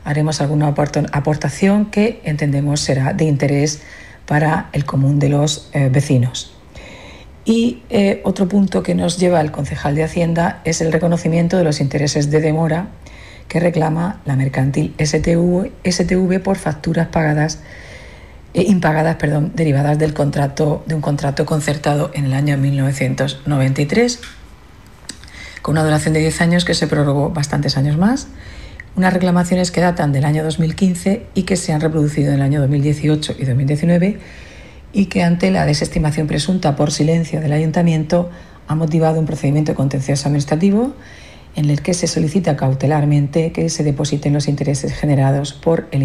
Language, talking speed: Spanish, 145 wpm